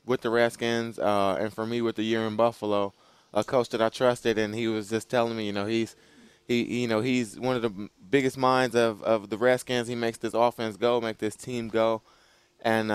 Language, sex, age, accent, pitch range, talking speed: English, male, 20-39, American, 105-120 Hz, 225 wpm